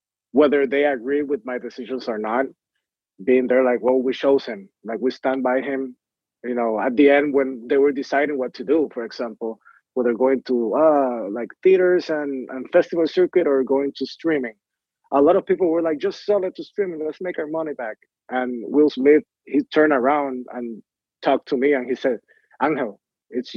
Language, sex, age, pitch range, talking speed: English, male, 30-49, 125-145 Hz, 200 wpm